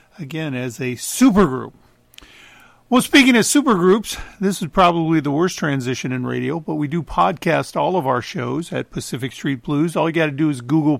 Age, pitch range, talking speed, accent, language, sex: 50-69, 130-165 Hz, 190 wpm, American, English, male